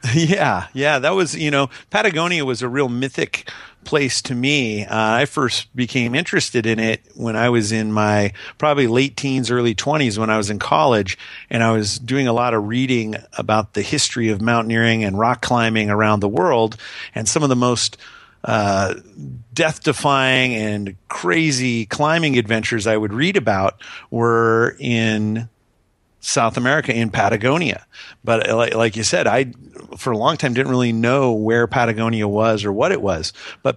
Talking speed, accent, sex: 170 wpm, American, male